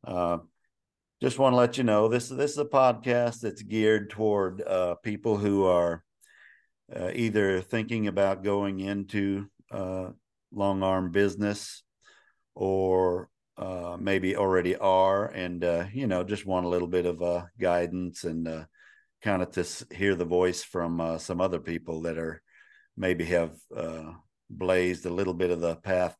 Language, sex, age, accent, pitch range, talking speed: English, male, 50-69, American, 85-100 Hz, 160 wpm